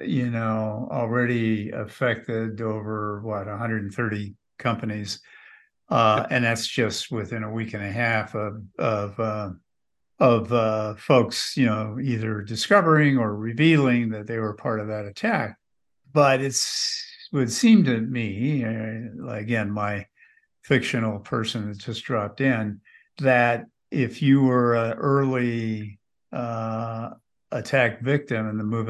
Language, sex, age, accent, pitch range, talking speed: English, male, 50-69, American, 110-125 Hz, 135 wpm